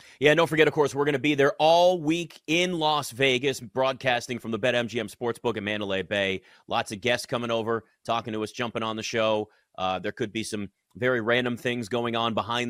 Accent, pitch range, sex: American, 110-150 Hz, male